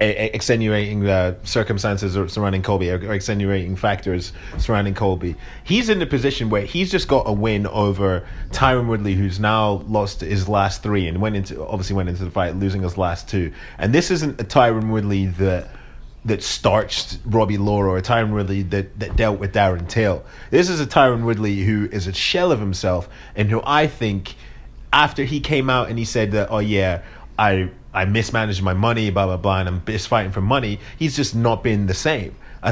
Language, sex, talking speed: English, male, 200 wpm